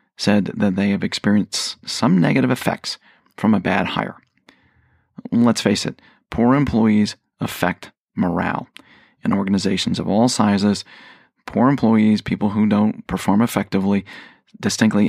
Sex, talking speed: male, 125 wpm